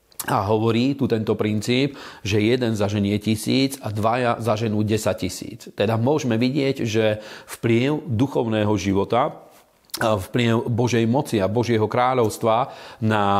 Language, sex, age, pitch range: Slovak, male, 40-59, 105-120 Hz